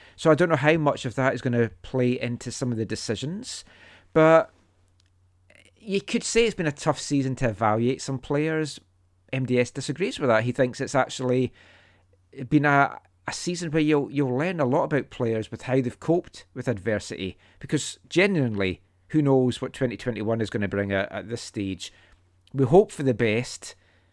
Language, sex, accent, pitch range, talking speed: English, male, British, 100-140 Hz, 185 wpm